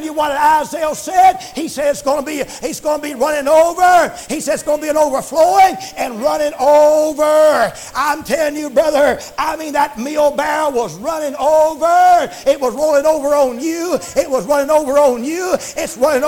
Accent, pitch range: American, 280-325 Hz